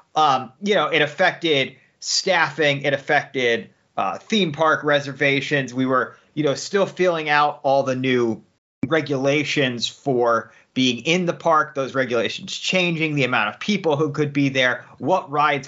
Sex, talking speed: male, 155 wpm